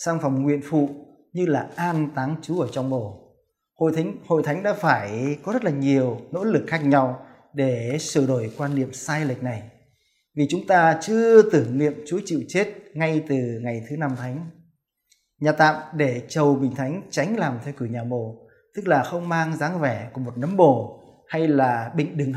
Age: 20-39